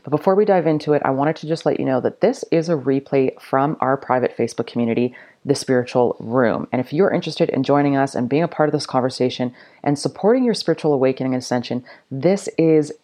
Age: 30-49